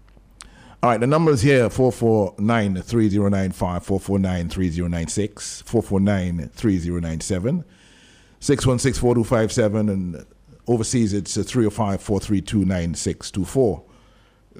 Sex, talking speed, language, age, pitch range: male, 50 wpm, English, 50-69, 95-115 Hz